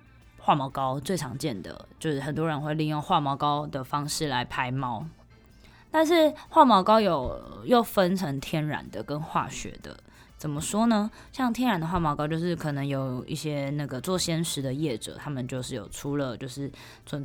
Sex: female